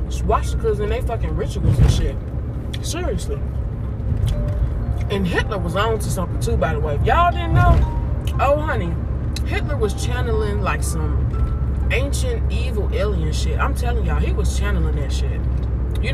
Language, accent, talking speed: English, American, 155 wpm